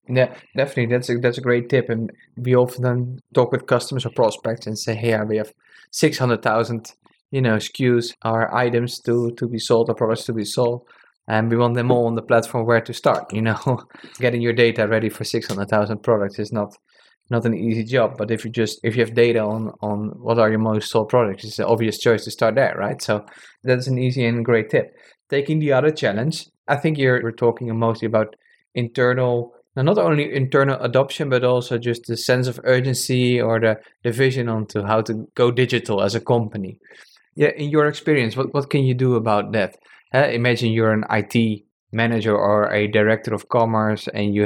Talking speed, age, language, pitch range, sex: 215 wpm, 20-39, English, 110-125 Hz, male